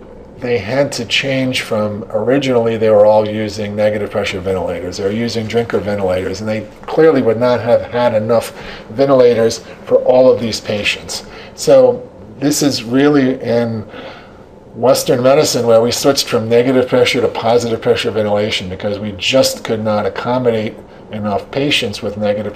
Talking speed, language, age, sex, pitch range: 155 wpm, English, 40-59, male, 105-130 Hz